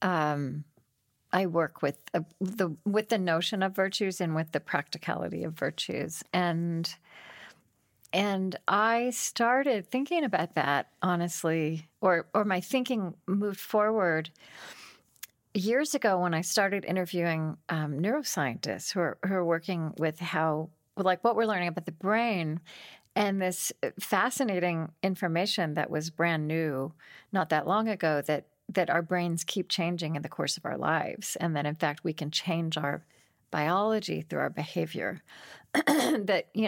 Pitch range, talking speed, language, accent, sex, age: 165-210 Hz, 150 wpm, English, American, female, 40-59